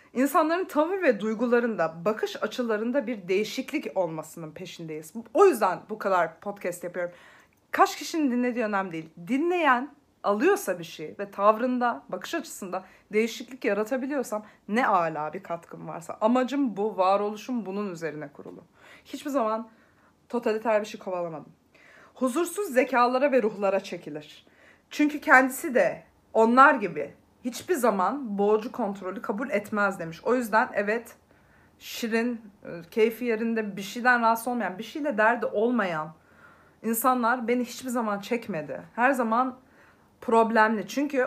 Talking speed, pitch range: 130 wpm, 195-255 Hz